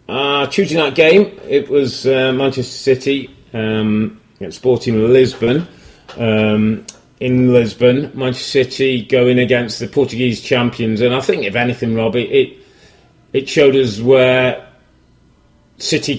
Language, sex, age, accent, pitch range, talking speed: English, male, 30-49, British, 120-145 Hz, 125 wpm